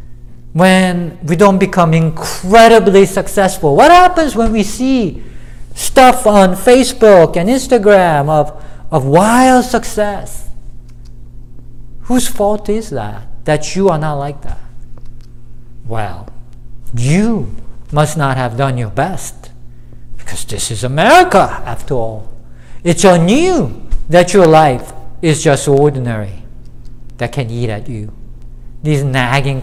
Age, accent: 50-69, Japanese